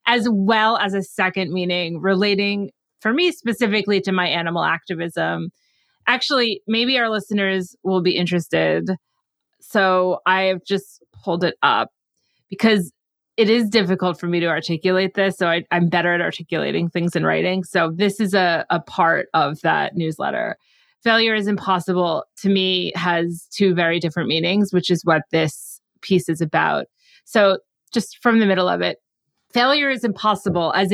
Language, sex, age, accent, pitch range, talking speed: English, female, 30-49, American, 175-215 Hz, 160 wpm